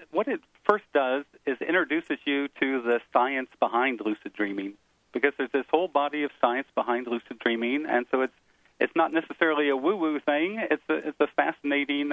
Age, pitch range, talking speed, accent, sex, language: 50-69, 120-150 Hz, 185 wpm, American, male, English